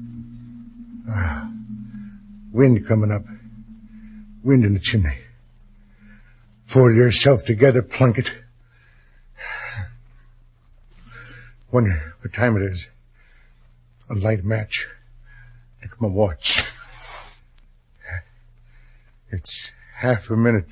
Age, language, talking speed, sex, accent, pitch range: 60-79, English, 80 wpm, male, American, 100-125 Hz